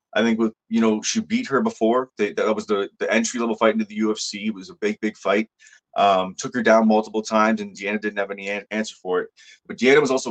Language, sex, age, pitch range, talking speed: English, male, 30-49, 110-130 Hz, 245 wpm